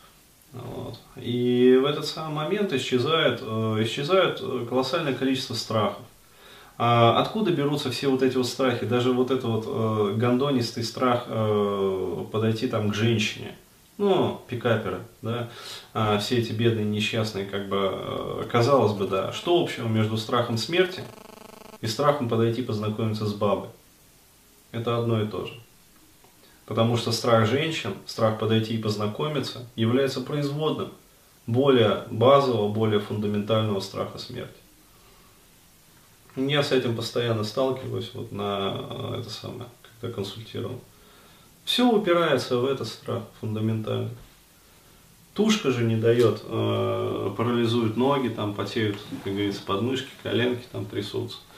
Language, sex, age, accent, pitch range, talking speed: Russian, male, 20-39, native, 110-130 Hz, 125 wpm